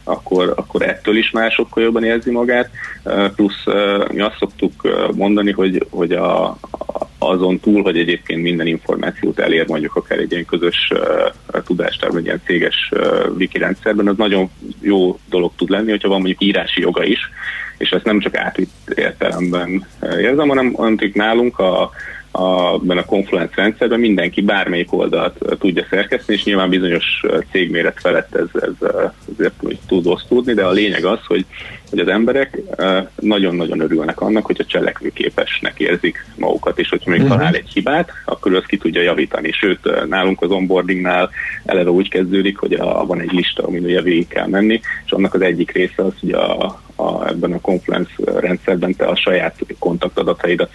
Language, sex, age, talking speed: Hungarian, male, 30-49, 165 wpm